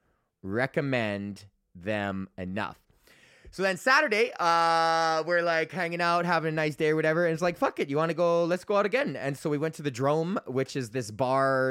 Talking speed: 210 wpm